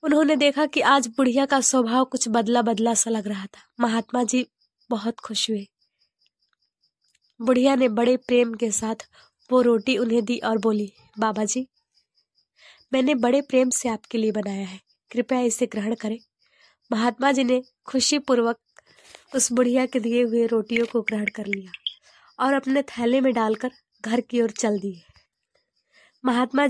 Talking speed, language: 160 wpm, Hindi